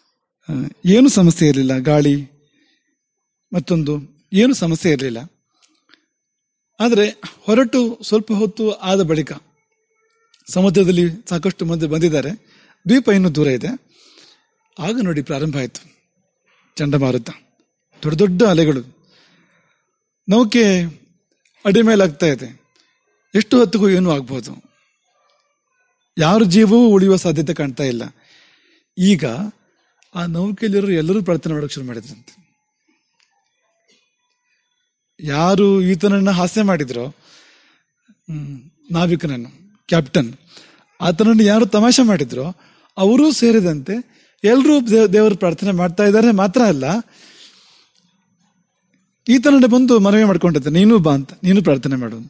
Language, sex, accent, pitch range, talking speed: English, male, Indian, 160-225 Hz, 70 wpm